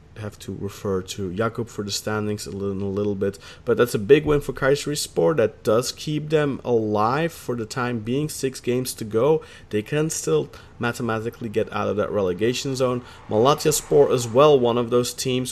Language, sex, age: English, male, 30-49